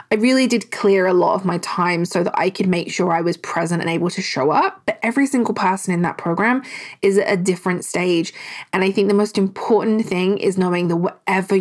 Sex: female